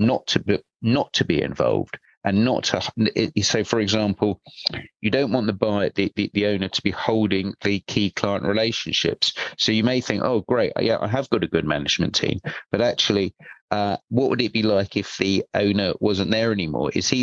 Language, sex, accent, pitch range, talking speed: English, male, British, 90-105 Hz, 205 wpm